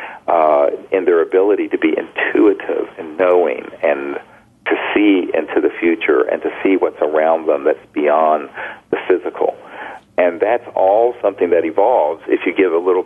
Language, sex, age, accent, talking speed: English, male, 40-59, American, 165 wpm